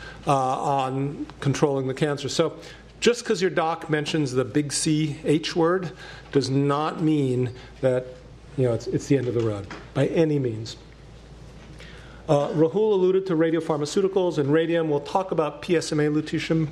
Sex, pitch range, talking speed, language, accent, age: male, 135-165 Hz, 160 wpm, English, American, 40-59